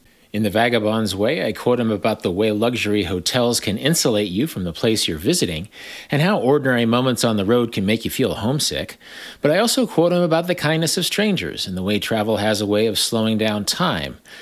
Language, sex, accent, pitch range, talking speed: English, male, American, 100-140 Hz, 220 wpm